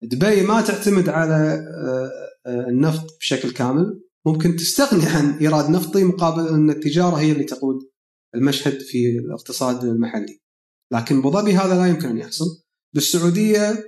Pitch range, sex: 150-205 Hz, male